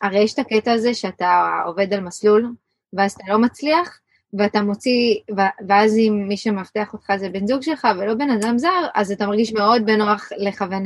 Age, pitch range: 20-39, 190-220 Hz